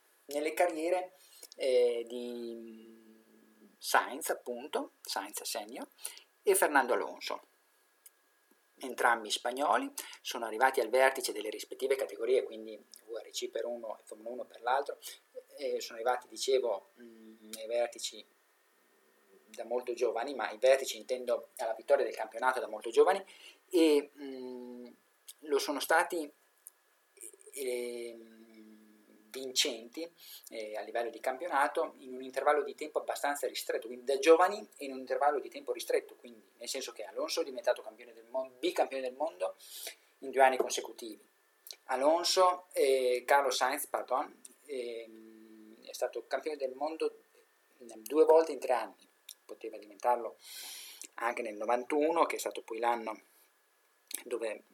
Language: Italian